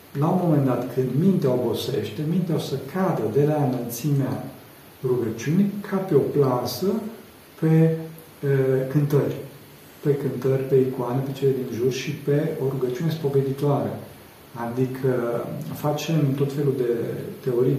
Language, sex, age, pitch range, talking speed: Romanian, male, 50-69, 125-150 Hz, 140 wpm